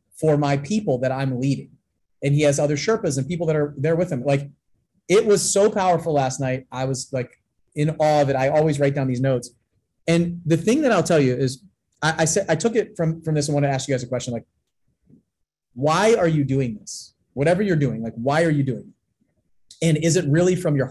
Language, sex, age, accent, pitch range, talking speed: English, male, 30-49, American, 135-175 Hz, 240 wpm